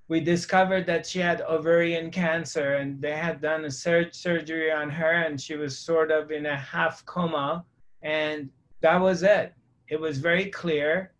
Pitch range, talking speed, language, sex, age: 150-175 Hz, 170 wpm, English, male, 30-49